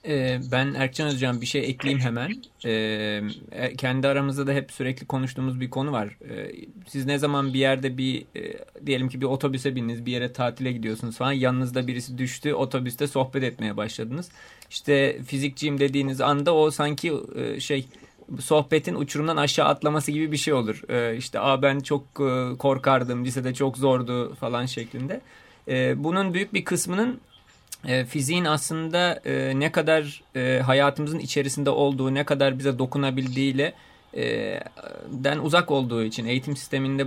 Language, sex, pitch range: Turkish, male, 130-145 Hz